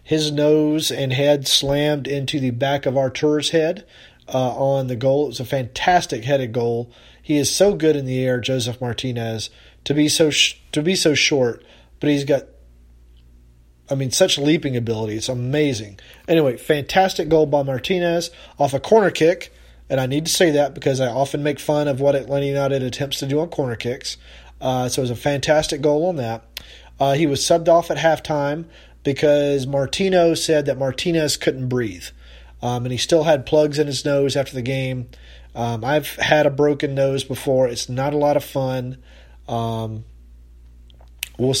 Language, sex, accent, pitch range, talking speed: English, male, American, 125-150 Hz, 185 wpm